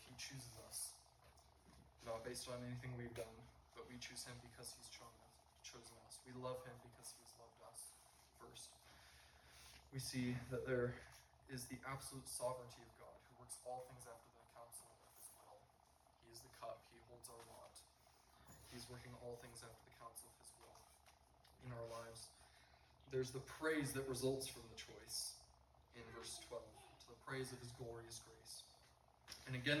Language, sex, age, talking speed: English, male, 20-39, 170 wpm